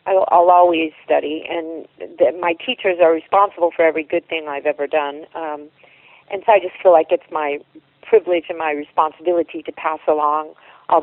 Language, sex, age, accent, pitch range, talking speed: English, female, 50-69, American, 155-180 Hz, 180 wpm